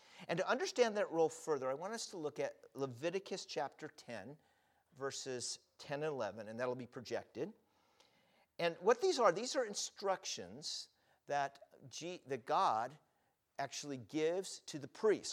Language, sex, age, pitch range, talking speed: English, male, 50-69, 125-195 Hz, 150 wpm